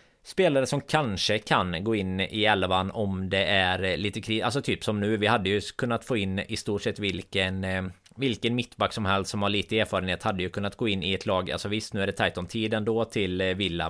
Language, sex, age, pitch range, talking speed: Swedish, male, 20-39, 95-115 Hz, 235 wpm